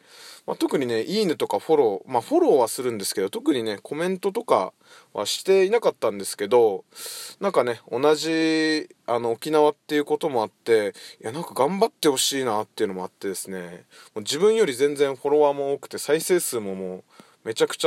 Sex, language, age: male, Japanese, 20-39